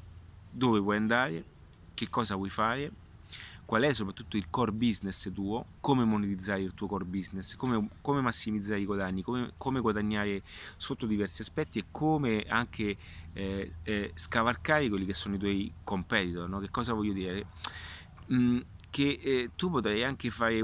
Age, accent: 30-49, native